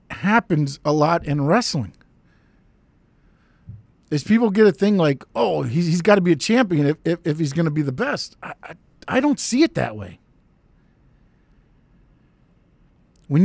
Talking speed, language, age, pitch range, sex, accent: 160 wpm, English, 50-69, 150-225 Hz, male, American